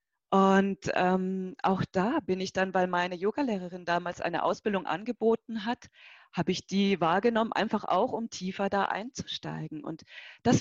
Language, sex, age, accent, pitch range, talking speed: German, female, 30-49, German, 180-220 Hz, 155 wpm